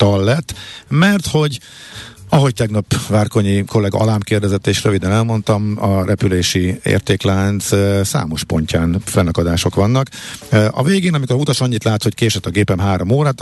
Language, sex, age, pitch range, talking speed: Hungarian, male, 50-69, 95-120 Hz, 150 wpm